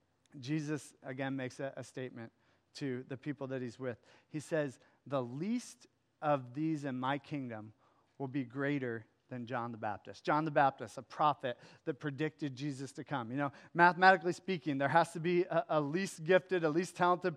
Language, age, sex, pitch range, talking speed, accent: English, 40-59, male, 125-165 Hz, 185 wpm, American